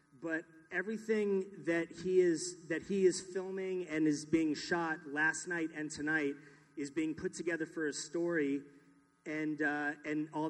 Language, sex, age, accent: English, male, 30-49, American